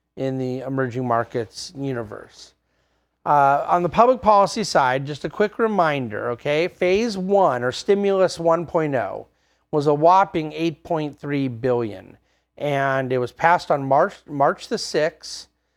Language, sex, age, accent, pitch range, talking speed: English, male, 40-59, American, 135-170 Hz, 135 wpm